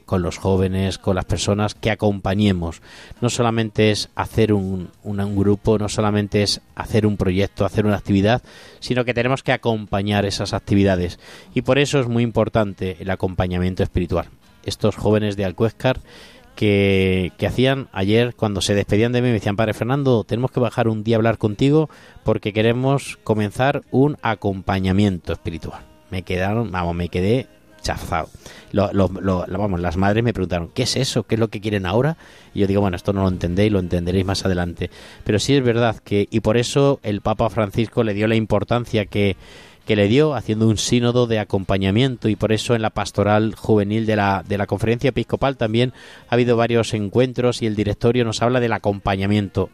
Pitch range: 100-120 Hz